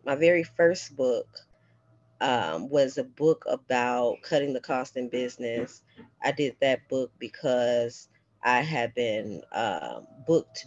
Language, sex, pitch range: English, female, 120-145 Hz